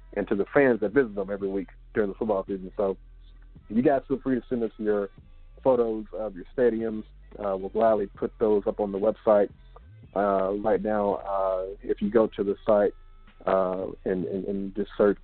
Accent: American